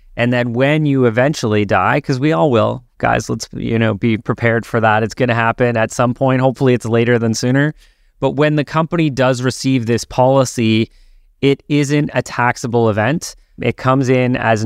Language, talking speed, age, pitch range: English, 190 wpm, 30-49, 115-130 Hz